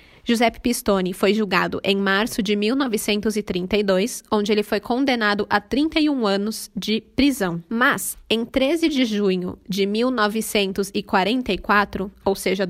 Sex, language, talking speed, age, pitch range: female, Portuguese, 125 wpm, 20-39, 200-235 Hz